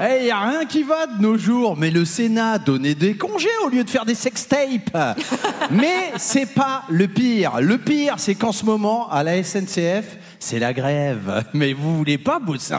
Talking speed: 205 wpm